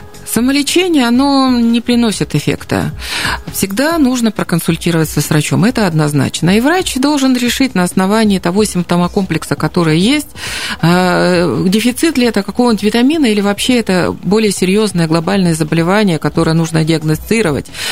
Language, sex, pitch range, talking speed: Russian, female, 165-225 Hz, 125 wpm